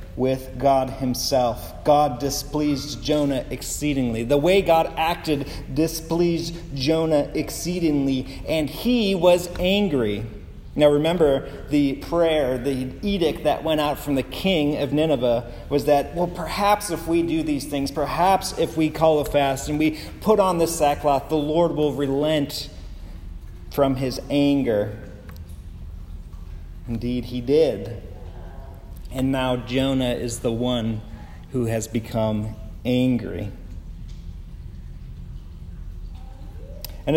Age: 30-49